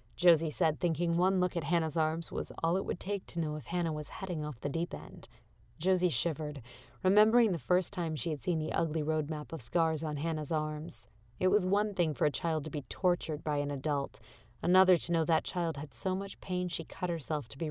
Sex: female